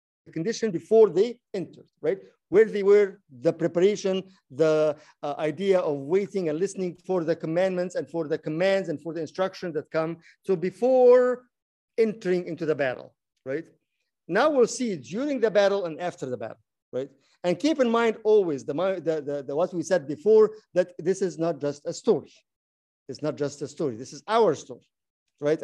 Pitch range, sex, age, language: 145-190 Hz, male, 50-69, English